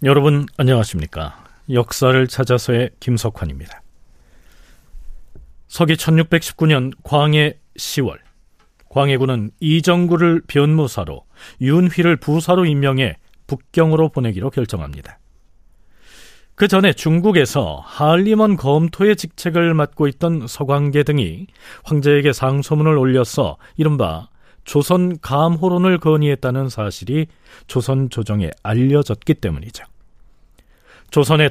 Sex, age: male, 40-59